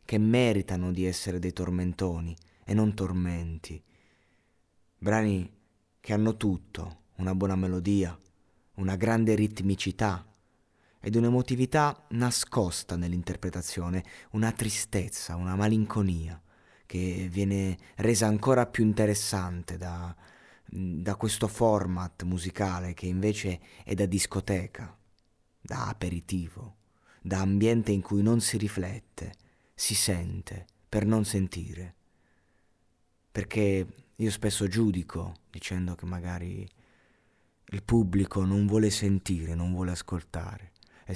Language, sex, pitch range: Italian, male, 90-105 Hz